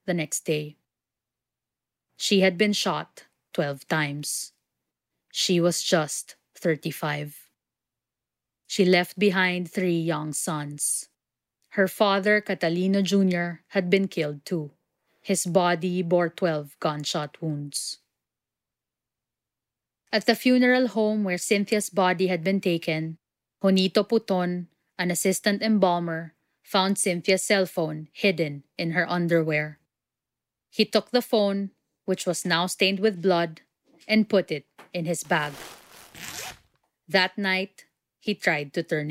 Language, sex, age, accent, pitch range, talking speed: English, female, 20-39, Filipino, 165-205 Hz, 120 wpm